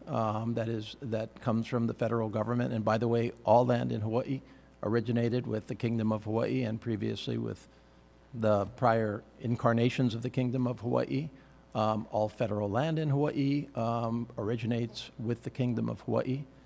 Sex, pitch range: male, 110-130 Hz